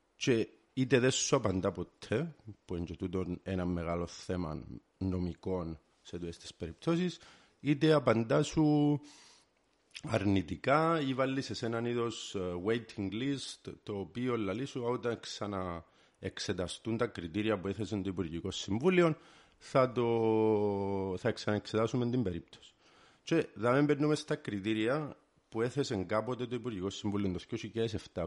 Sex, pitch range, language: male, 95-120 Hz, Greek